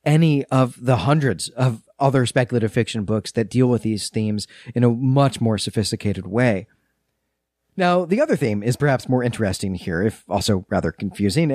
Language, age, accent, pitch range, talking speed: English, 40-59, American, 105-145 Hz, 170 wpm